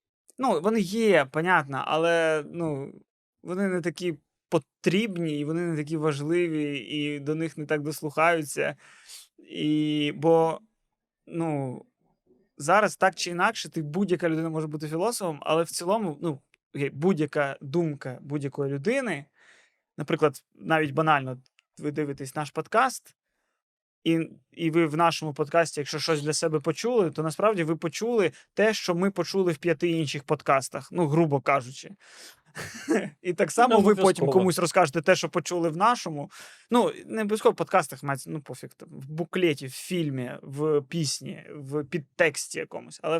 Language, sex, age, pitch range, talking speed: Ukrainian, male, 20-39, 150-180 Hz, 145 wpm